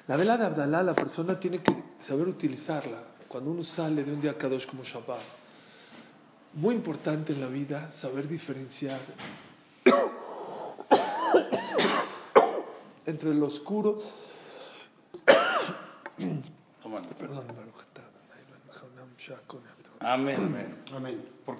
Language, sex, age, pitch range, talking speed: Spanish, male, 50-69, 135-170 Hz, 90 wpm